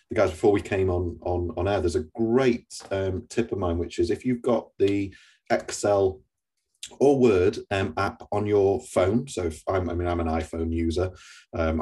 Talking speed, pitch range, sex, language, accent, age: 205 wpm, 85-115 Hz, male, English, British, 30-49